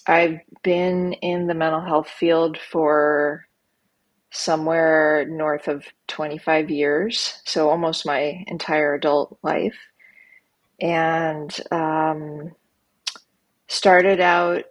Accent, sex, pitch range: American, female, 155-175 Hz